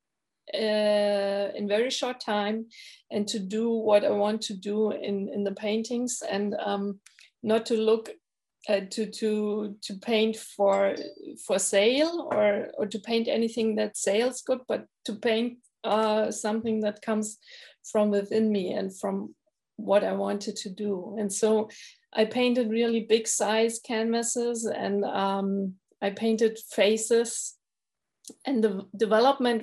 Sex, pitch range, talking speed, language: female, 200-230 Hz, 145 wpm, English